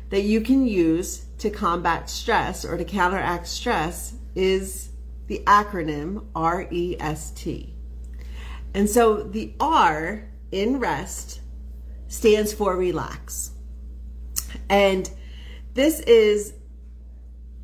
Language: English